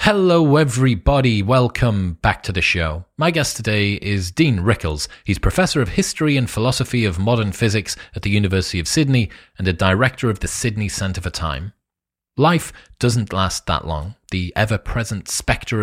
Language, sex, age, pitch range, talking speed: English, male, 30-49, 95-130 Hz, 165 wpm